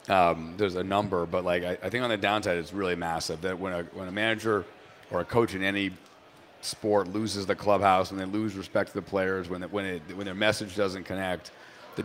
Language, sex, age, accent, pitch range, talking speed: English, male, 40-59, American, 90-100 Hz, 235 wpm